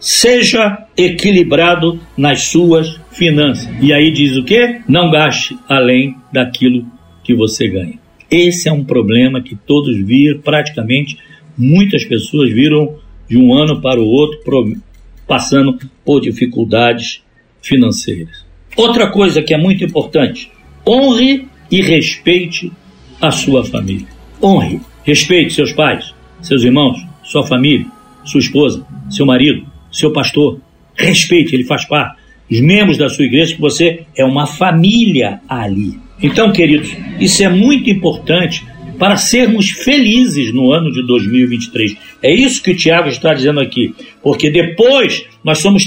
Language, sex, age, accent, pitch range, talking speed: Portuguese, male, 60-79, Brazilian, 135-200 Hz, 135 wpm